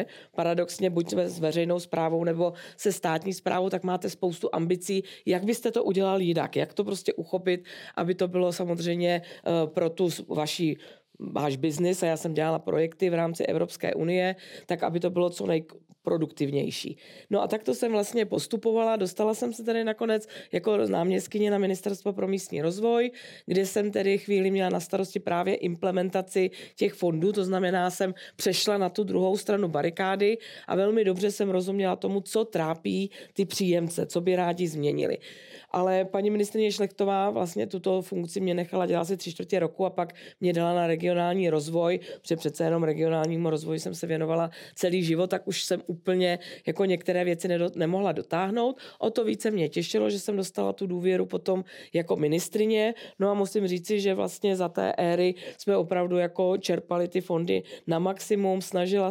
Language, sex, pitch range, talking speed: Czech, female, 170-195 Hz, 175 wpm